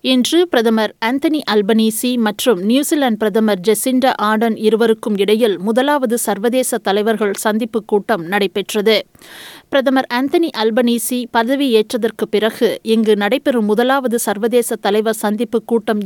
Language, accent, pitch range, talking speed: Tamil, native, 220-255 Hz, 110 wpm